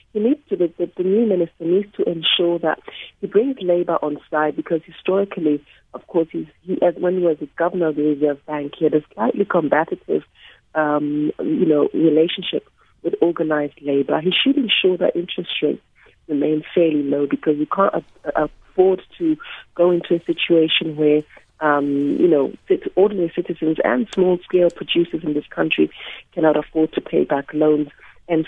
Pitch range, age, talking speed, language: 150-180 Hz, 30-49, 170 wpm, English